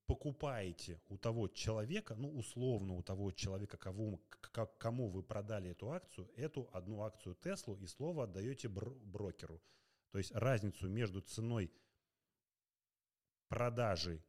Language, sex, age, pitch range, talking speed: Russian, male, 30-49, 95-115 Hz, 130 wpm